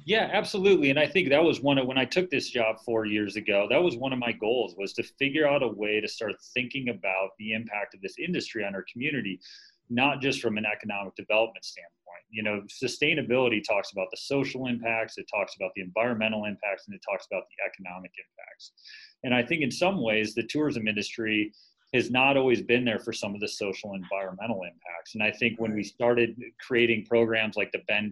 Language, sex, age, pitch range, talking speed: English, male, 30-49, 100-125 Hz, 215 wpm